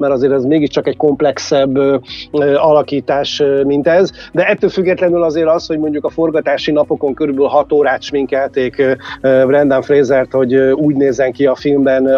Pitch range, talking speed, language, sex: 135-145 Hz, 175 wpm, Hungarian, male